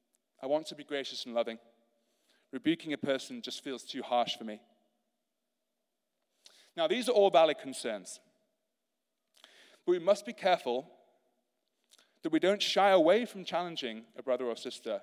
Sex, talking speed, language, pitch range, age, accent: male, 150 wpm, English, 130-215 Hz, 30-49, British